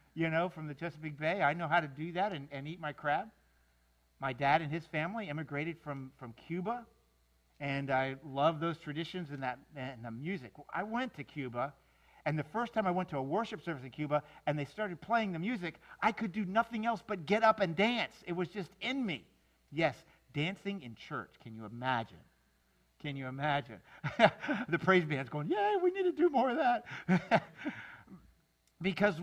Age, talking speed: 50-69, 195 wpm